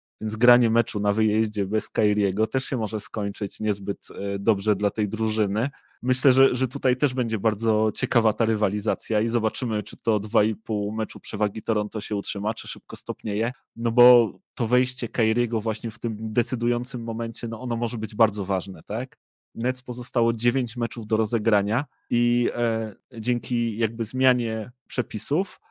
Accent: native